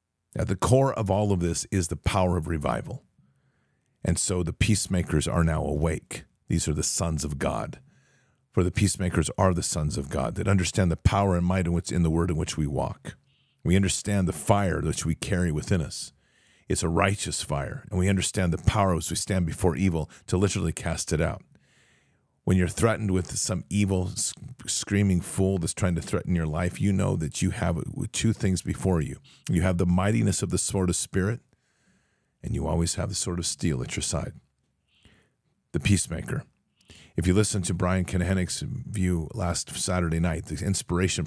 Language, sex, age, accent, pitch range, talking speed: English, male, 50-69, American, 80-100 Hz, 195 wpm